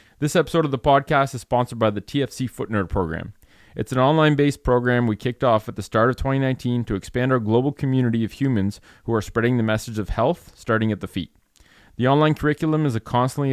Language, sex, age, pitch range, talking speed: English, male, 30-49, 105-130 Hz, 215 wpm